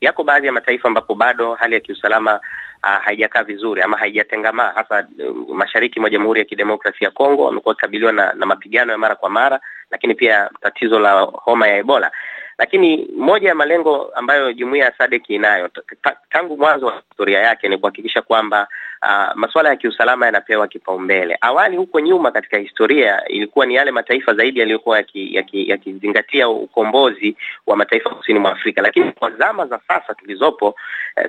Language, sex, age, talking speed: Swahili, male, 30-49, 170 wpm